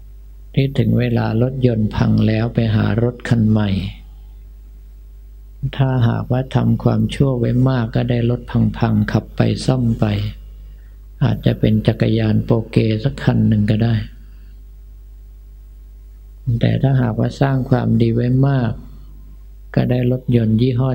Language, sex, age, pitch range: Thai, male, 50-69, 100-125 Hz